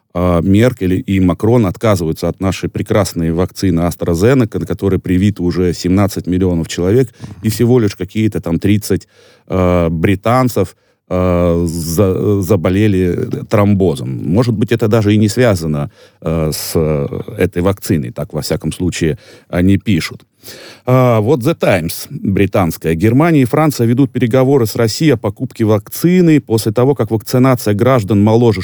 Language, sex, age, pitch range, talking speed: Russian, male, 30-49, 95-125 Hz, 125 wpm